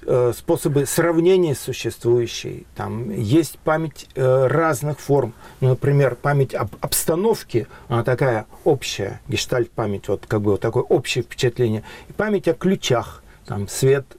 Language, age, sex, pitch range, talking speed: Russian, 50-69, male, 120-170 Hz, 130 wpm